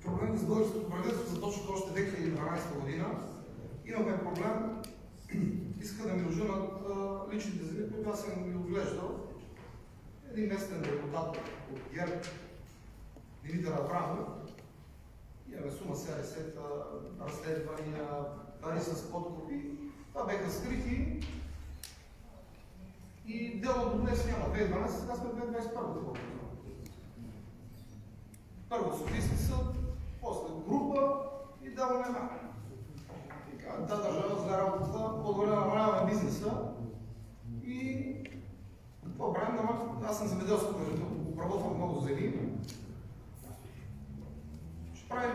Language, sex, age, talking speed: Bulgarian, male, 40-59, 100 wpm